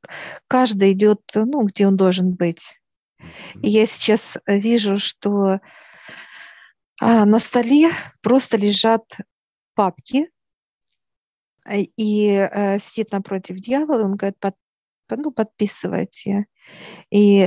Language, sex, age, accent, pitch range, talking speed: Russian, female, 50-69, native, 195-220 Hz, 95 wpm